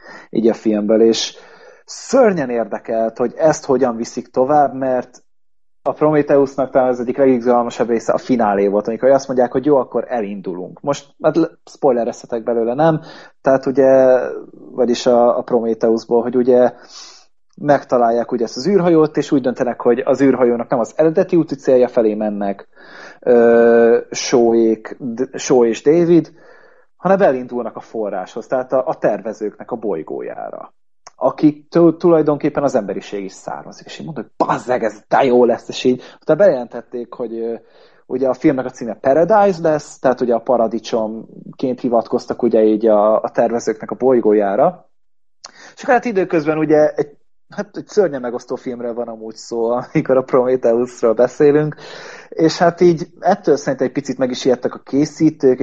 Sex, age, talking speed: male, 30-49, 155 wpm